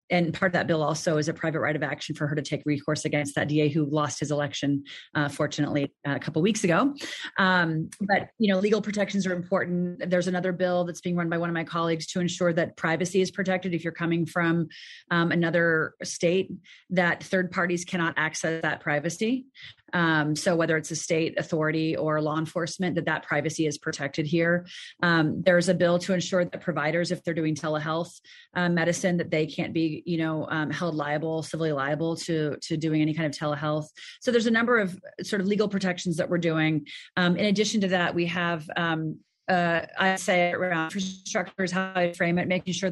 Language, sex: English, female